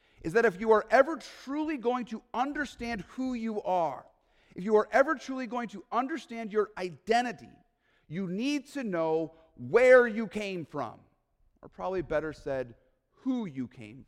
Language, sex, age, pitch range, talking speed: English, male, 40-59, 160-225 Hz, 160 wpm